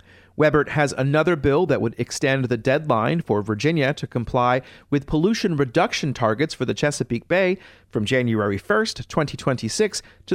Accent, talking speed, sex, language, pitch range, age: American, 150 wpm, male, English, 120-170 Hz, 40-59